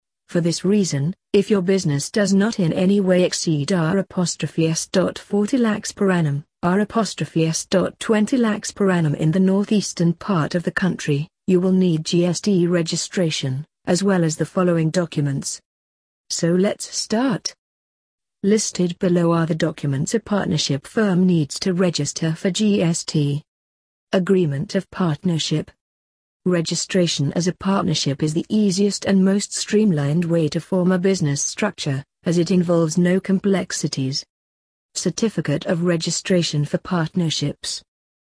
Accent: British